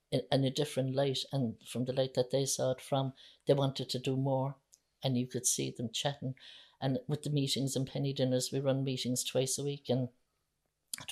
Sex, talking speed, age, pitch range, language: female, 210 wpm, 60-79, 130-150 Hz, English